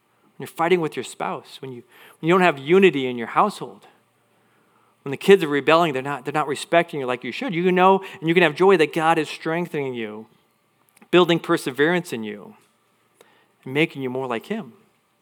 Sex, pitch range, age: male, 150-200 Hz, 40-59